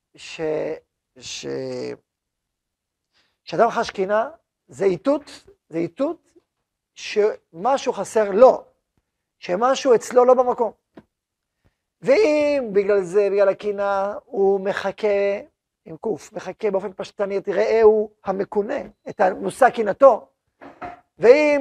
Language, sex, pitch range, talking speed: Hebrew, male, 205-265 Hz, 105 wpm